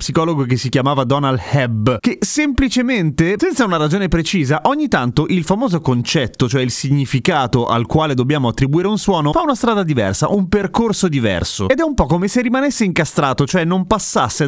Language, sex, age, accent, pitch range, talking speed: Italian, male, 30-49, native, 135-195 Hz, 180 wpm